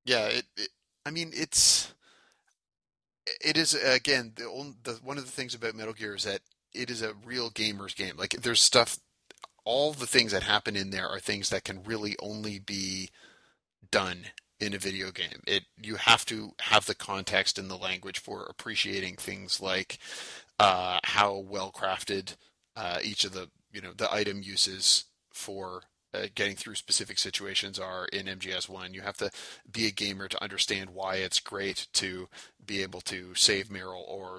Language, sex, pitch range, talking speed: English, male, 95-110 Hz, 180 wpm